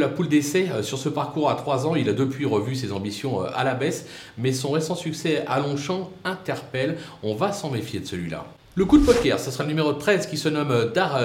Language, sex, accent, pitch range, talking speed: French, male, French, 130-170 Hz, 235 wpm